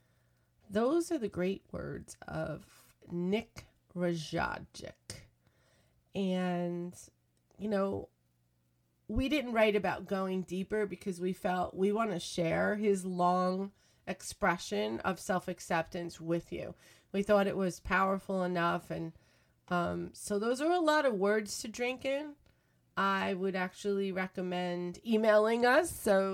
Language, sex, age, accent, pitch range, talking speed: English, female, 30-49, American, 175-210 Hz, 130 wpm